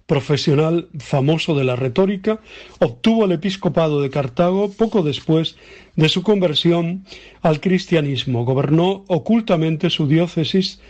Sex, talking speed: male, 115 wpm